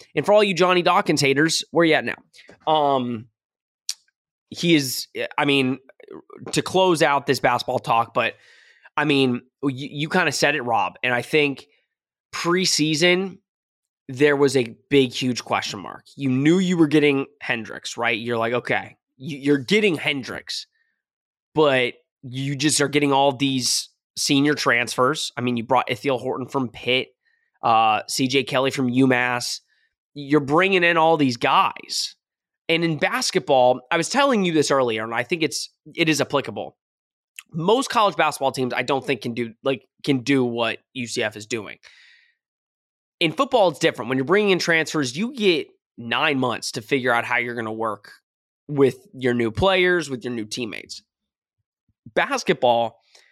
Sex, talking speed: male, 165 wpm